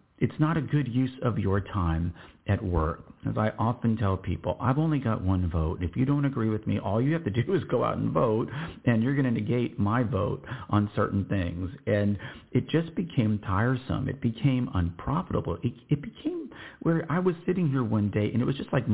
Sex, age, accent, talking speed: male, 50-69, American, 220 wpm